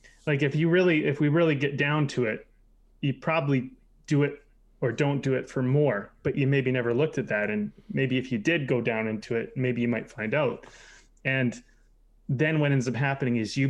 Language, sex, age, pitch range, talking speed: English, male, 20-39, 120-150 Hz, 220 wpm